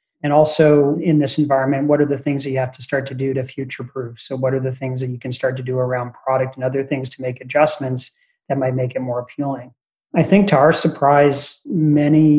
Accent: American